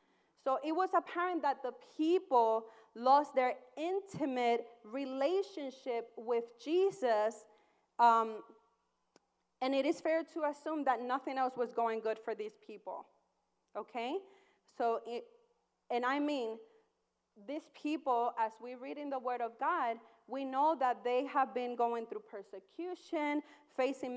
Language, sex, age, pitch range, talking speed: English, female, 30-49, 230-320 Hz, 135 wpm